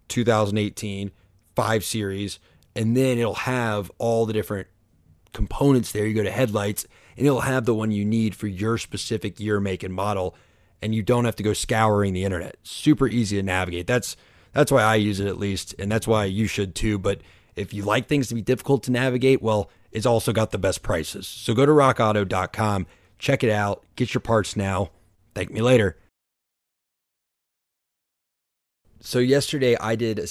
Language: English